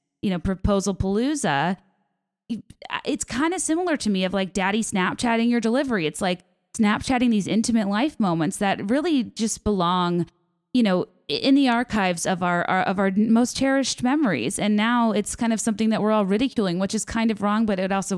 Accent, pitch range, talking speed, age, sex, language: American, 185-230 Hz, 190 wpm, 20-39, female, English